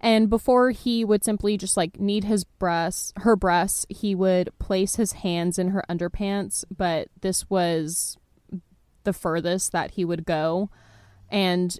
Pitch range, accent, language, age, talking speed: 175-205 Hz, American, English, 20-39, 155 wpm